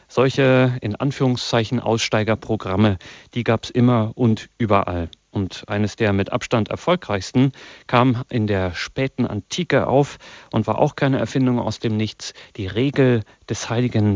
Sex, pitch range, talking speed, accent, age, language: male, 105-125 Hz, 145 wpm, German, 40-59, German